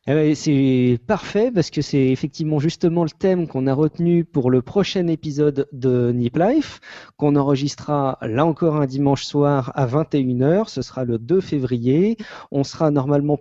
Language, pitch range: French, 130-165 Hz